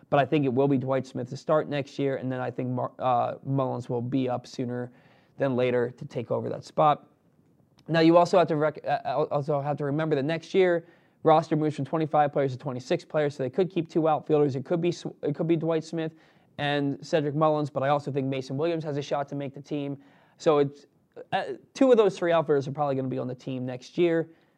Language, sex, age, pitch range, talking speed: English, male, 20-39, 130-160 Hz, 245 wpm